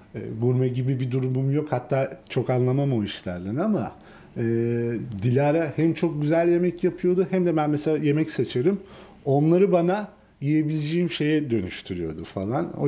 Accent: native